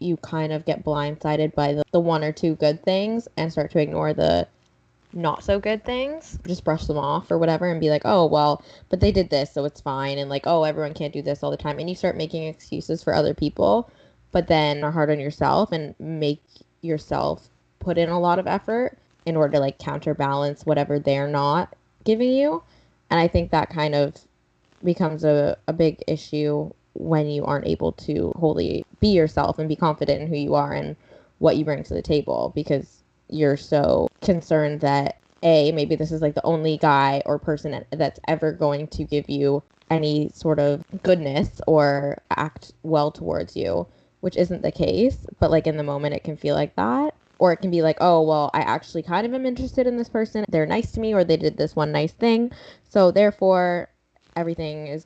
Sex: female